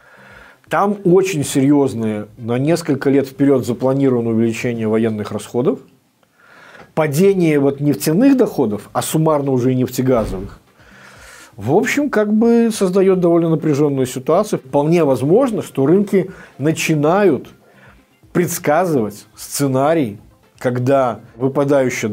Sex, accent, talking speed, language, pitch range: male, native, 100 wpm, Russian, 115-175 Hz